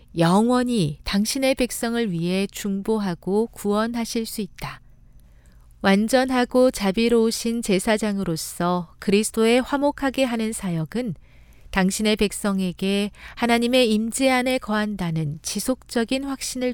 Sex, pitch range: female, 180-250 Hz